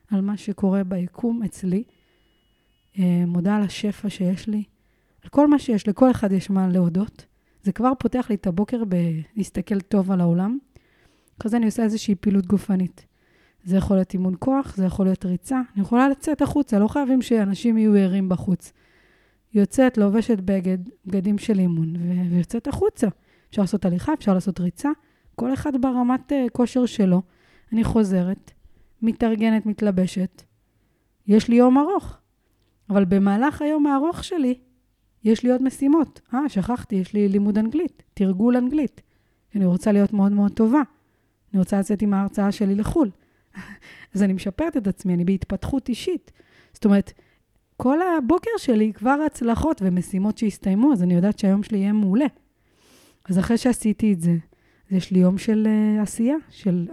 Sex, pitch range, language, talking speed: female, 190-245 Hz, Hebrew, 155 wpm